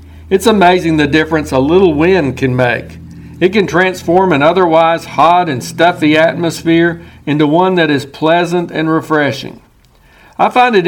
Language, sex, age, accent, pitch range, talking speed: English, male, 60-79, American, 145-175 Hz, 155 wpm